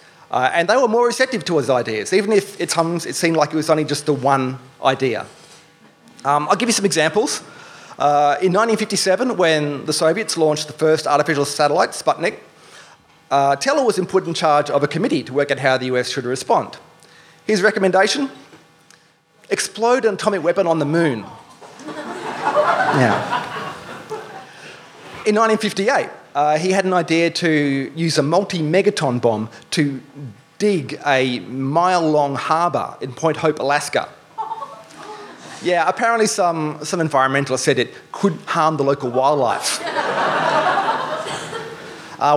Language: English